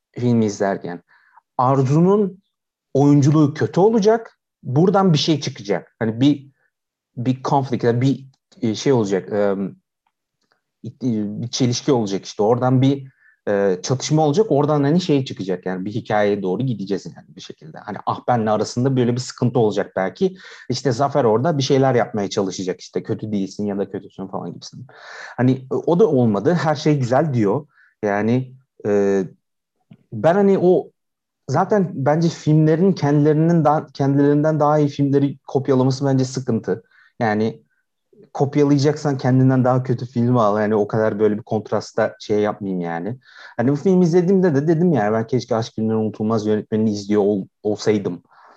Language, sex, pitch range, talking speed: Turkish, male, 110-150 Hz, 145 wpm